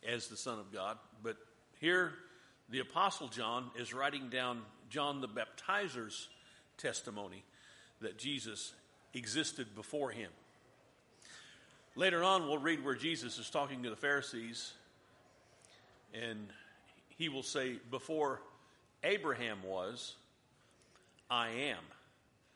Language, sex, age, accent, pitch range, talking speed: English, male, 50-69, American, 115-145 Hz, 110 wpm